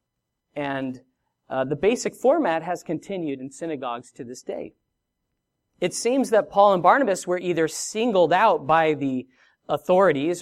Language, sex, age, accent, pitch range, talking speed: English, male, 40-59, American, 135-200 Hz, 145 wpm